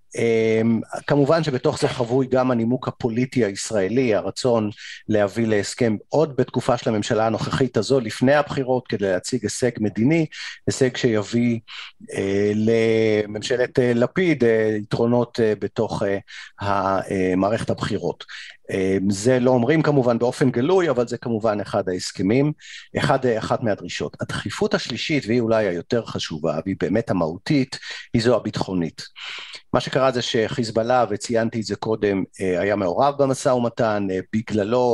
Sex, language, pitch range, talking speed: male, Hebrew, 105-130 Hz, 130 wpm